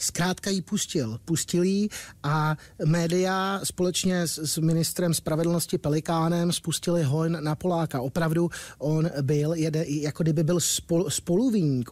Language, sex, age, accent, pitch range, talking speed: Czech, male, 30-49, native, 150-170 Hz, 125 wpm